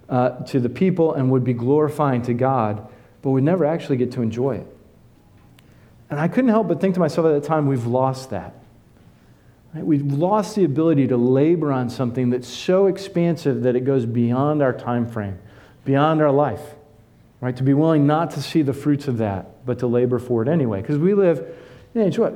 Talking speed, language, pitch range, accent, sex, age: 200 wpm, English, 125-170 Hz, American, male, 40-59